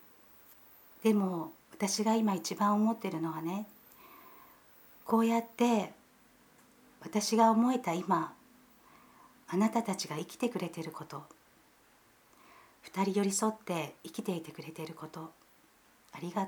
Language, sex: Japanese, female